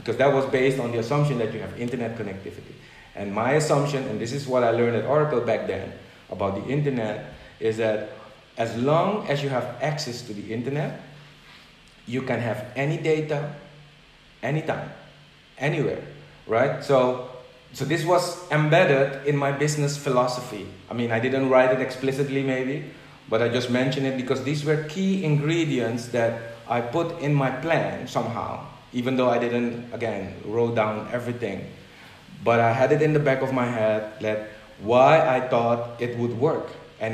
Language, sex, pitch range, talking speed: Dutch, male, 120-150 Hz, 175 wpm